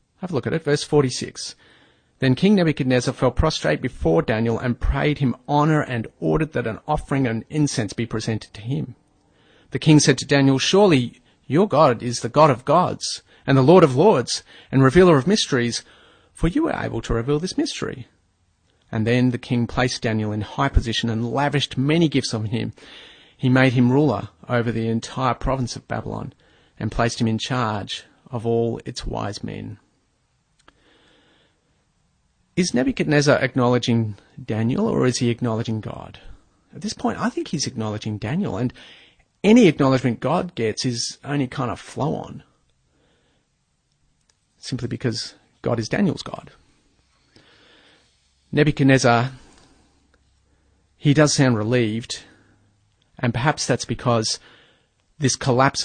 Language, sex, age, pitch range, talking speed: English, male, 30-49, 110-140 Hz, 150 wpm